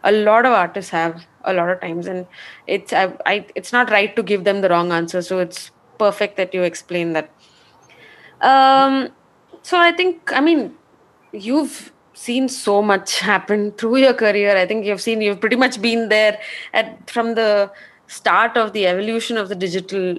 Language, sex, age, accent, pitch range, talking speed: English, female, 20-39, Indian, 180-245 Hz, 185 wpm